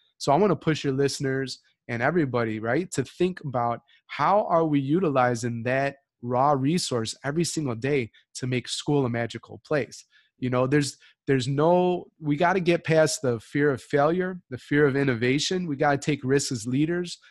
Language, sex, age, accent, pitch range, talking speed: English, male, 30-49, American, 125-155 Hz, 185 wpm